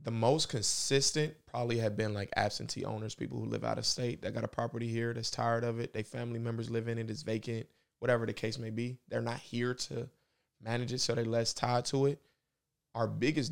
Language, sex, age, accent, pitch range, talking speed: English, male, 20-39, American, 110-120 Hz, 225 wpm